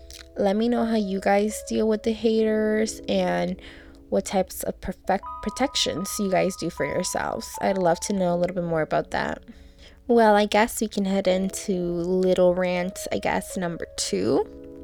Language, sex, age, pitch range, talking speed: English, female, 20-39, 170-220 Hz, 180 wpm